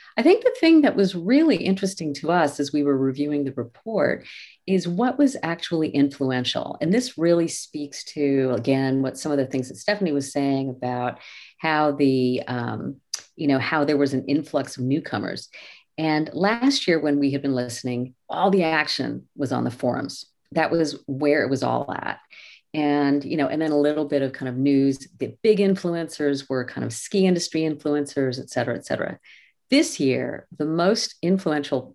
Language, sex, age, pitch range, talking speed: English, female, 50-69, 135-170 Hz, 190 wpm